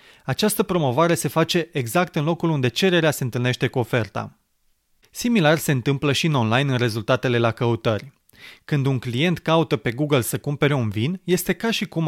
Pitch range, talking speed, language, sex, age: 130-170 Hz, 185 wpm, Romanian, male, 30-49